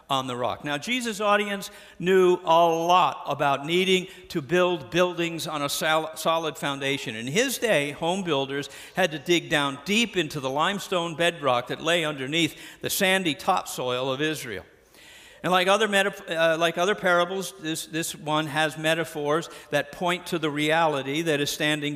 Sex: male